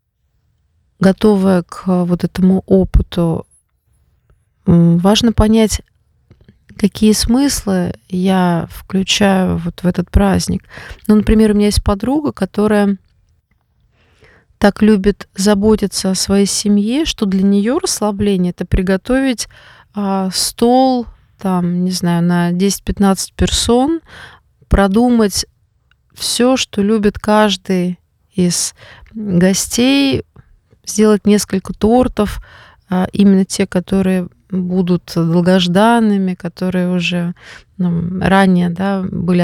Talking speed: 95 wpm